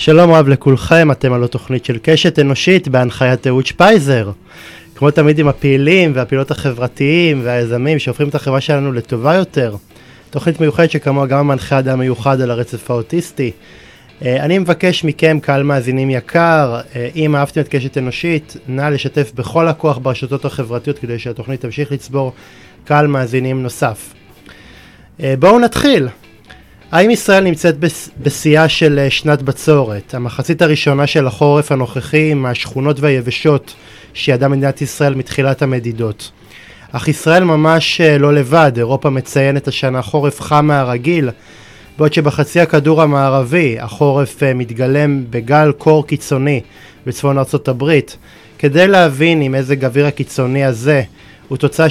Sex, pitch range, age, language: male, 130-155 Hz, 20-39, Hebrew